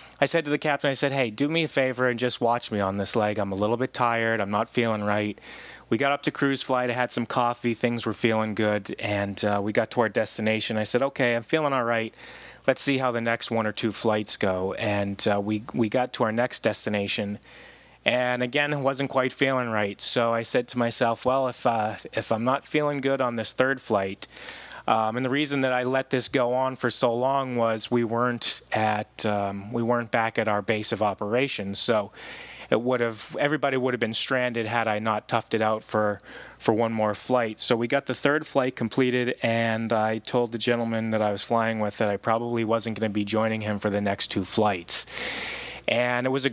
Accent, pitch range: American, 105-125 Hz